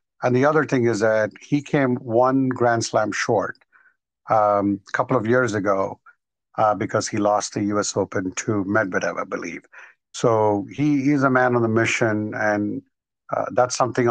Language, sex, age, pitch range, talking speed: English, male, 50-69, 105-125 Hz, 170 wpm